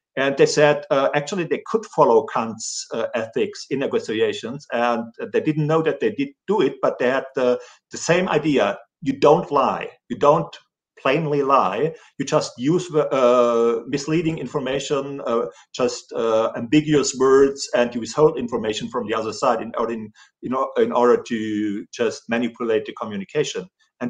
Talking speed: 160 wpm